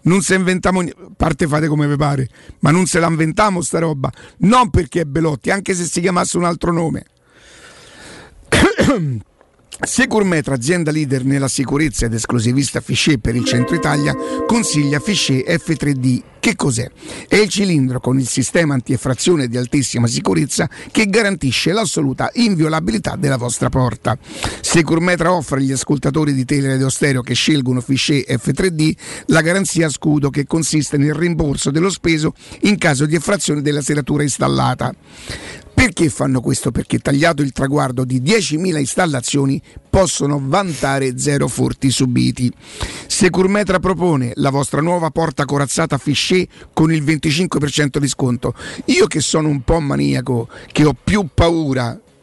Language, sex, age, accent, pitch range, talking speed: Italian, male, 50-69, native, 135-170 Hz, 145 wpm